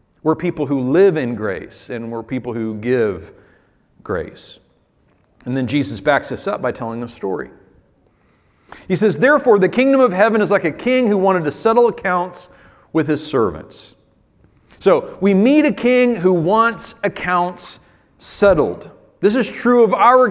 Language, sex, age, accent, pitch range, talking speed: English, male, 40-59, American, 155-215 Hz, 165 wpm